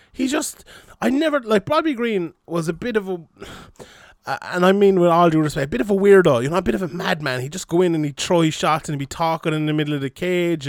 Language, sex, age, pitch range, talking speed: English, male, 20-39, 155-185 Hz, 280 wpm